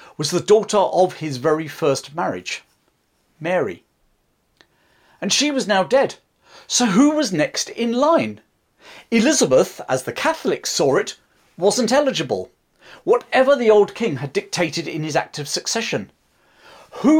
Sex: male